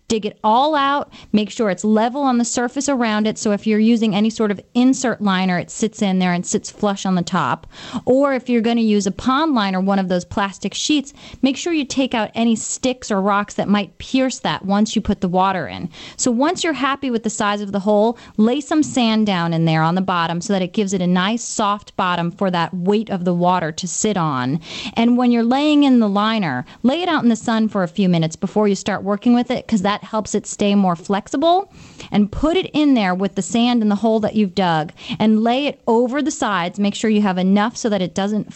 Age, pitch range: 30-49, 195-235 Hz